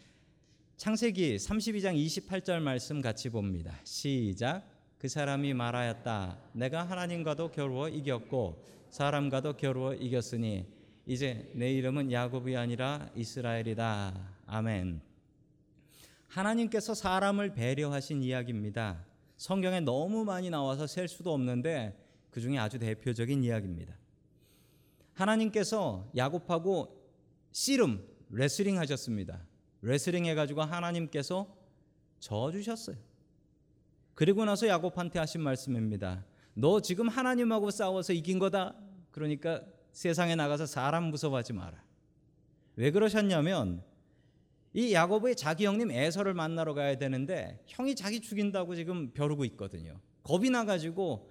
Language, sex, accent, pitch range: Korean, male, native, 125-190 Hz